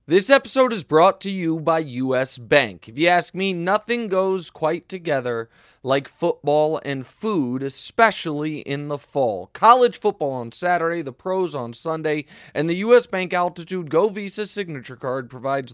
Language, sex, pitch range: English, male, 135-185 Hz